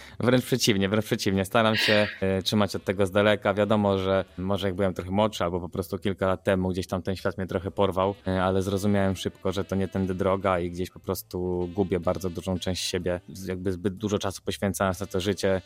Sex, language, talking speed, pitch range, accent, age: male, Polish, 215 wpm, 95-105 Hz, native, 20-39